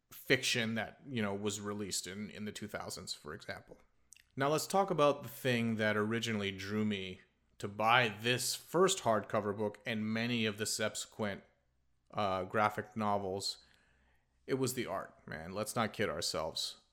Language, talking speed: English, 160 wpm